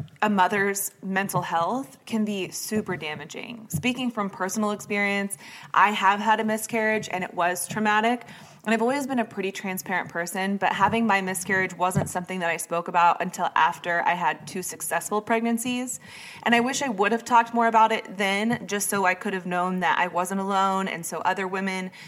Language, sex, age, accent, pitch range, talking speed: English, female, 20-39, American, 180-225 Hz, 195 wpm